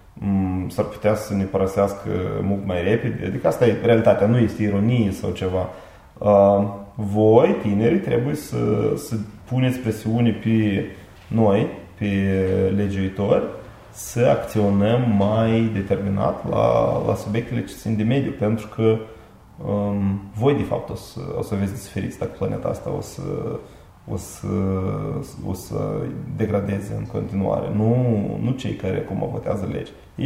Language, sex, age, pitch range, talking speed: Romanian, male, 20-39, 100-115 Hz, 135 wpm